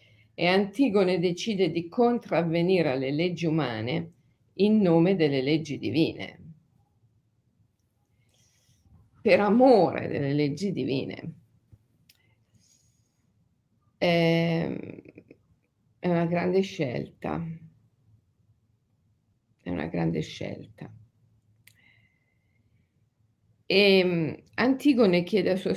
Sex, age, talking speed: female, 50-69, 70 wpm